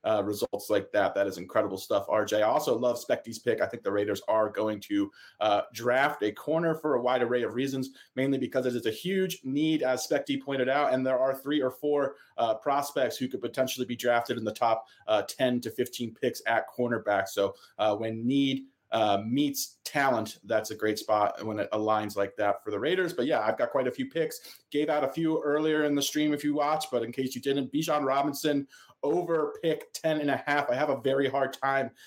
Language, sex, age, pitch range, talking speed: English, male, 30-49, 125-150 Hz, 230 wpm